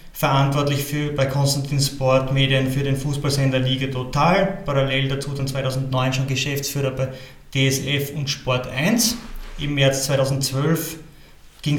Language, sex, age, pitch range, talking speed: German, male, 30-49, 135-160 Hz, 130 wpm